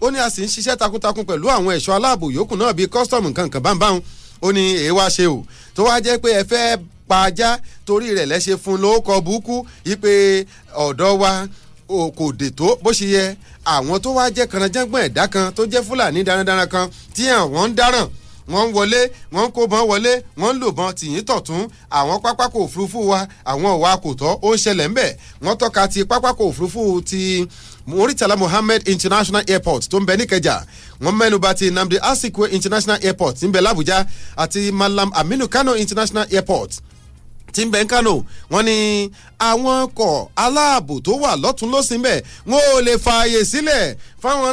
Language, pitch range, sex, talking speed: English, 185-235 Hz, male, 145 wpm